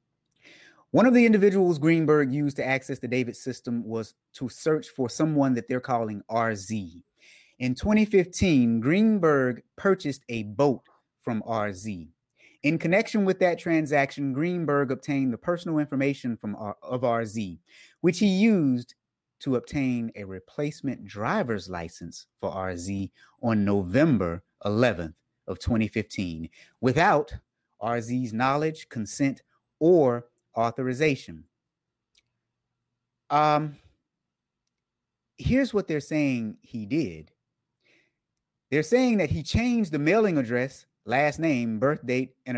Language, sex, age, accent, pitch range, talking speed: English, male, 30-49, American, 115-170 Hz, 120 wpm